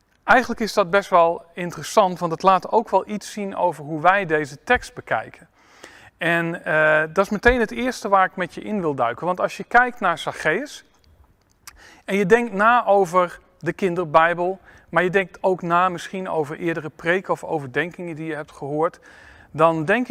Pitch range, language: 155-205 Hz, Dutch